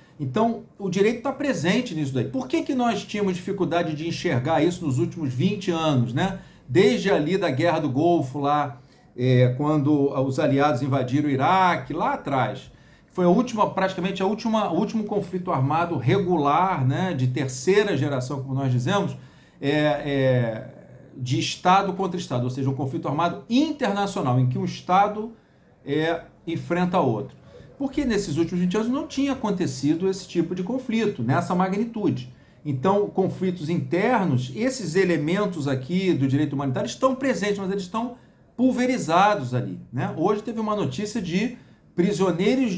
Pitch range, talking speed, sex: 145-200 Hz, 160 wpm, male